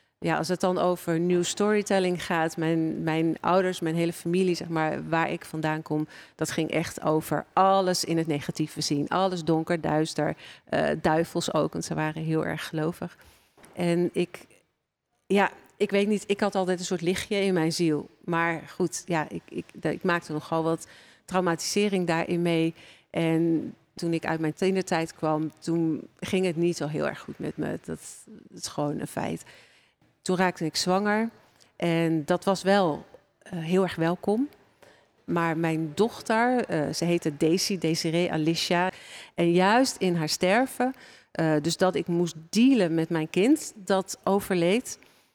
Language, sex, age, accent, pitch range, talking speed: Dutch, female, 40-59, Dutch, 160-190 Hz, 170 wpm